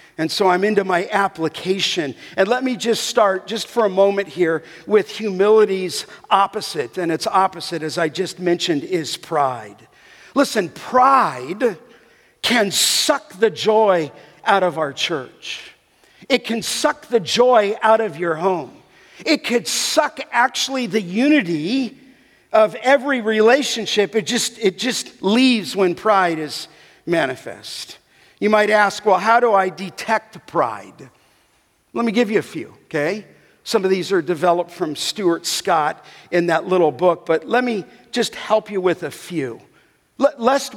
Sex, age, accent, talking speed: male, 50-69, American, 150 wpm